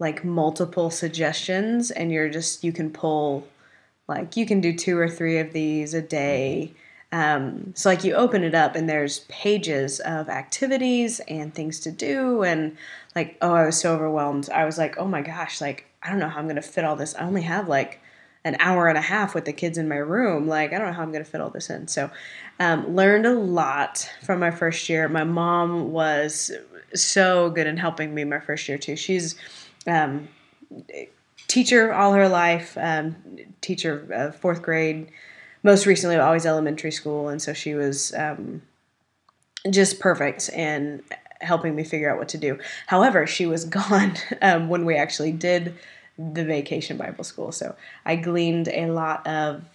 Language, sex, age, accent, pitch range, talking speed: English, female, 20-39, American, 150-180 Hz, 190 wpm